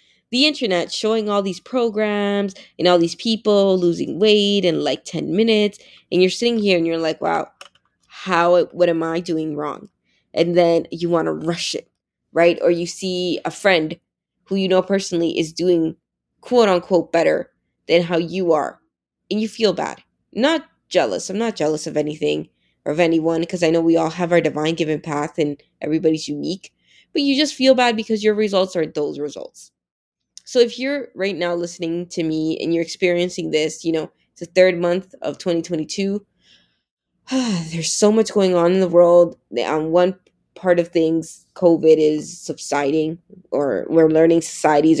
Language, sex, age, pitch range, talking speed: English, female, 20-39, 160-195 Hz, 180 wpm